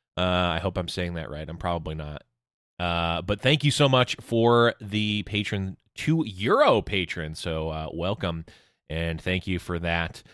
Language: English